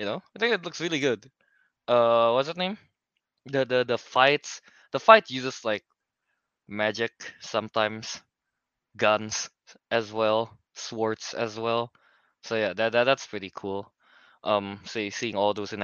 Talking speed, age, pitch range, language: 155 wpm, 20-39, 110-135 Hz, English